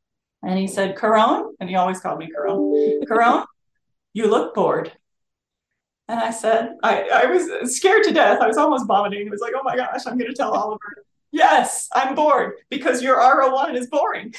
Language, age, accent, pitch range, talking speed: English, 30-49, American, 185-270 Hz, 190 wpm